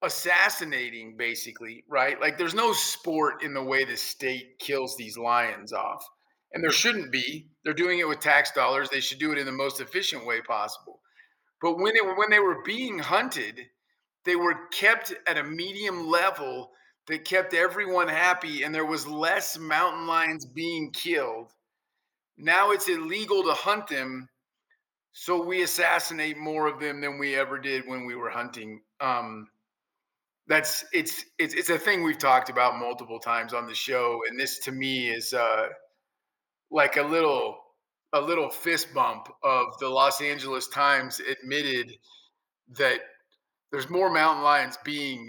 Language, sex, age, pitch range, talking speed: English, male, 40-59, 130-180 Hz, 165 wpm